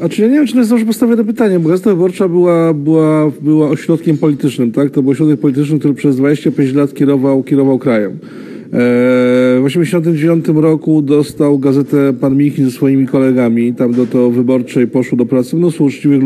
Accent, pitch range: native, 130-150 Hz